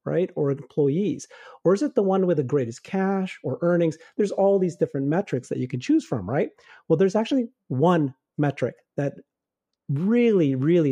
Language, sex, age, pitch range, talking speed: English, male, 40-59, 140-175 Hz, 180 wpm